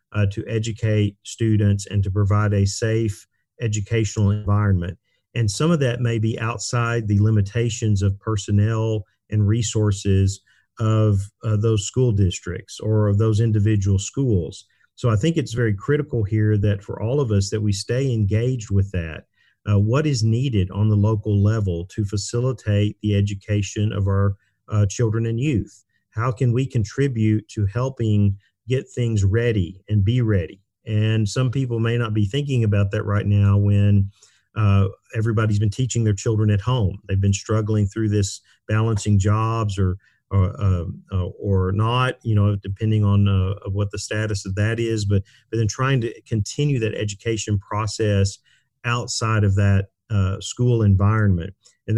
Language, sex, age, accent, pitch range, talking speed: English, male, 40-59, American, 100-115 Hz, 165 wpm